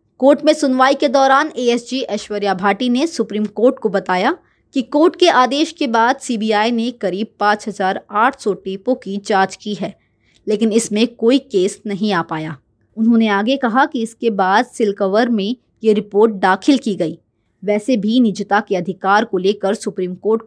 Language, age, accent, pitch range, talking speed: Hindi, 20-39, native, 200-260 Hz, 175 wpm